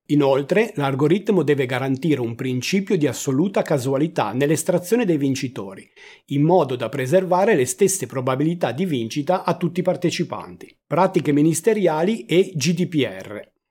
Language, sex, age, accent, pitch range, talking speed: Italian, male, 40-59, native, 130-175 Hz, 125 wpm